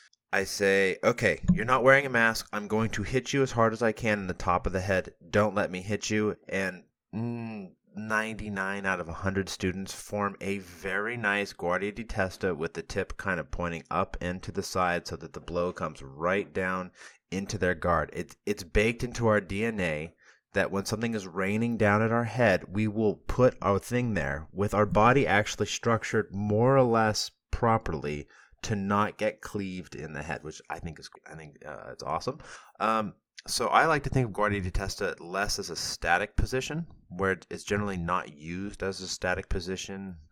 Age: 30-49